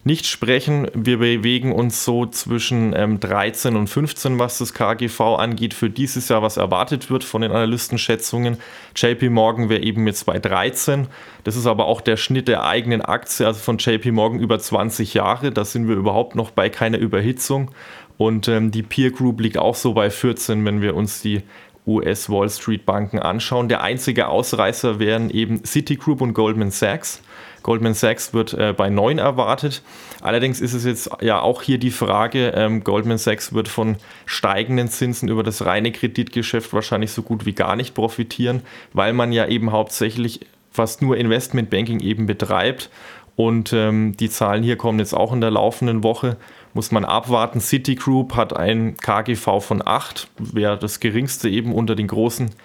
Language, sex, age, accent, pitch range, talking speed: German, male, 30-49, German, 110-120 Hz, 175 wpm